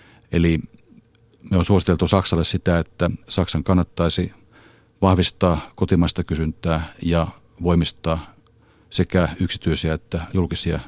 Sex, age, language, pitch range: male, 40-59, Finnish, 85-95 Hz